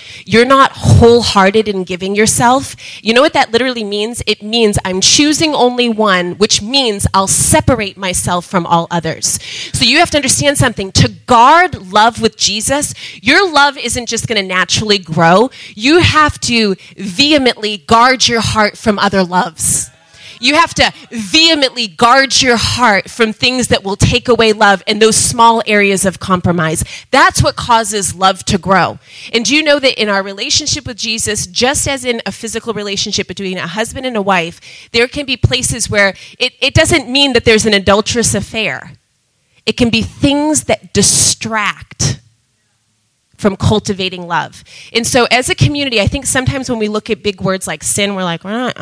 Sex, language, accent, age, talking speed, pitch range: female, English, American, 30-49, 180 wpm, 180-240 Hz